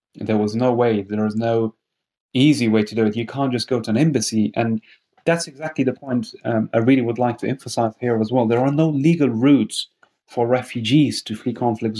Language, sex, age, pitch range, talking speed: English, male, 30-49, 110-125 Hz, 220 wpm